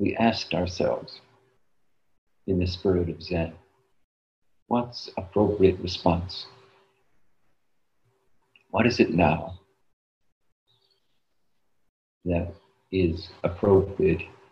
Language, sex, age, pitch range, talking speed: English, male, 50-69, 85-115 Hz, 75 wpm